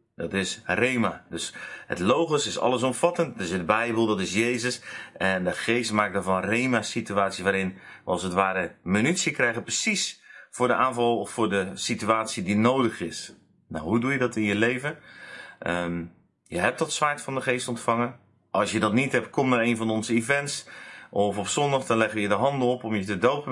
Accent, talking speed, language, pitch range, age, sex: Dutch, 205 wpm, Dutch, 100-125 Hz, 30-49, male